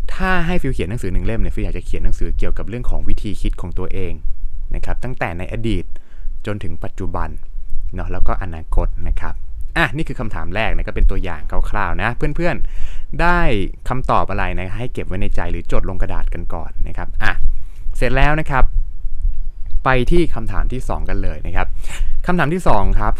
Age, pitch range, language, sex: 20-39, 85-120 Hz, Thai, male